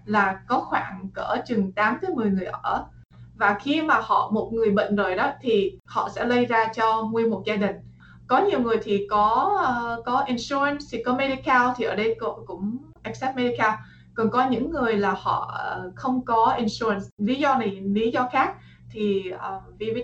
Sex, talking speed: female, 200 wpm